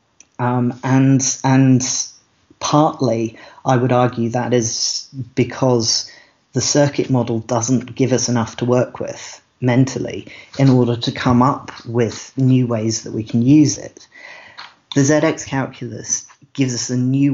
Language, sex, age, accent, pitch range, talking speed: English, male, 40-59, British, 115-130 Hz, 140 wpm